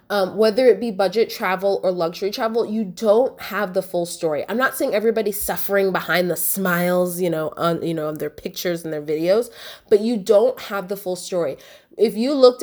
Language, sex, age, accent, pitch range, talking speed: English, female, 20-39, American, 190-255 Hz, 210 wpm